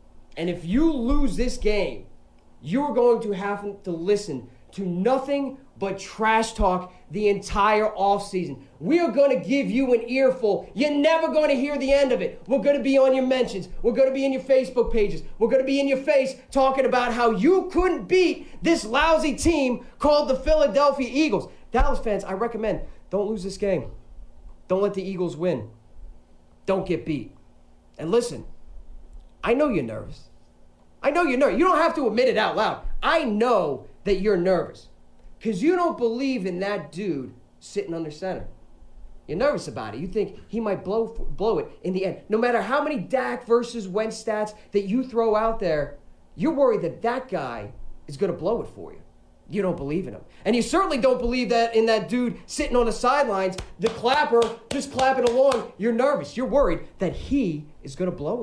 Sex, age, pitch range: male, 30-49, 185-270 Hz